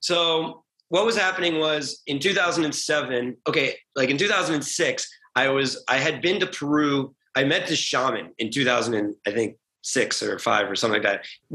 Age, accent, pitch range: 30-49, American, 130-175 Hz